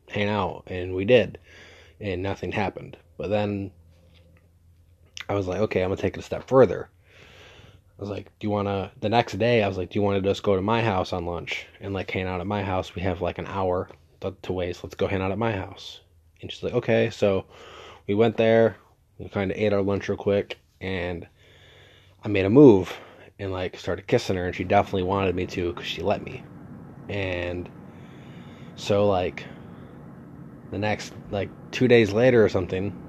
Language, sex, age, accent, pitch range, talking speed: English, male, 20-39, American, 90-105 Hz, 205 wpm